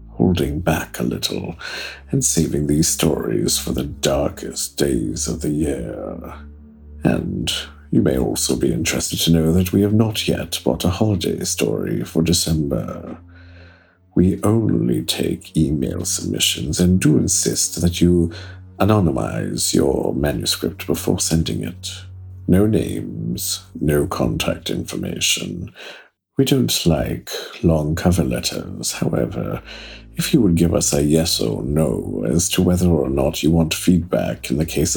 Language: English